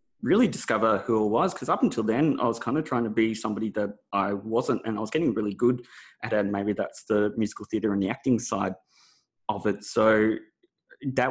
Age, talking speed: 20-39, 220 wpm